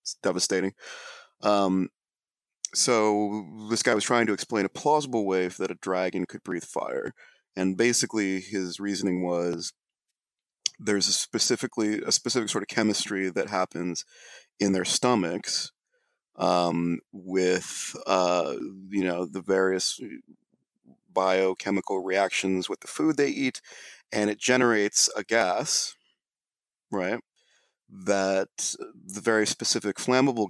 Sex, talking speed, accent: male, 120 wpm, American